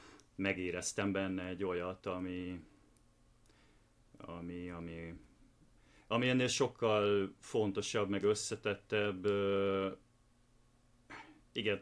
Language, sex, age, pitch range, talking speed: Hungarian, male, 30-49, 90-115 Hz, 70 wpm